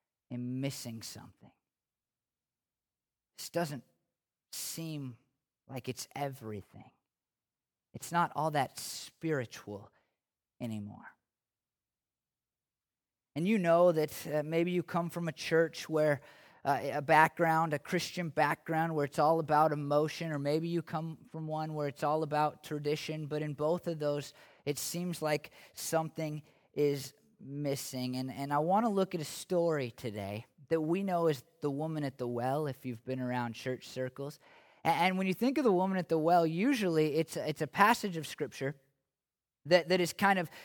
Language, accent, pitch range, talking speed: English, American, 145-175 Hz, 160 wpm